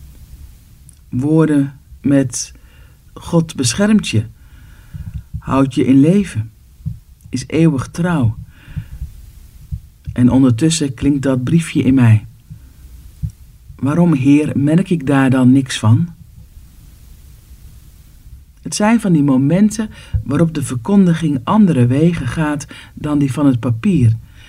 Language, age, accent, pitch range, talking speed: Dutch, 50-69, Dutch, 125-170 Hz, 105 wpm